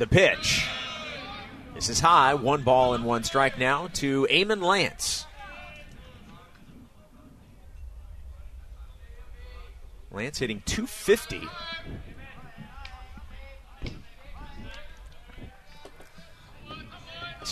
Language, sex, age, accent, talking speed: English, male, 30-49, American, 60 wpm